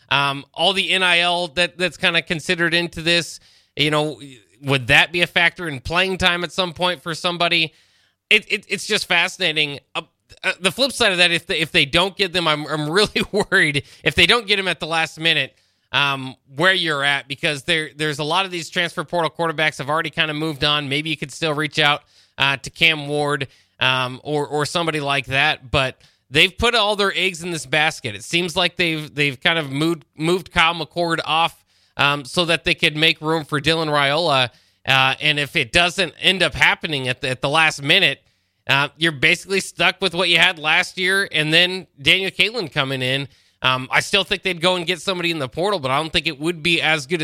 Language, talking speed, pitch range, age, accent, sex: English, 225 wpm, 145-180 Hz, 20-39, American, male